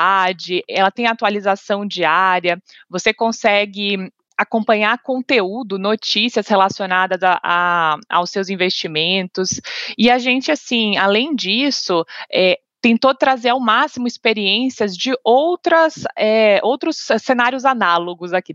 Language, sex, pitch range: Portuguese, female, 190-235 Hz